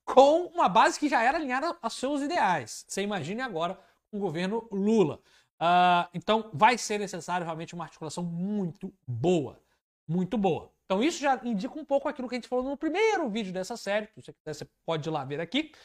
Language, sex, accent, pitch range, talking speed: Portuguese, male, Brazilian, 165-230 Hz, 195 wpm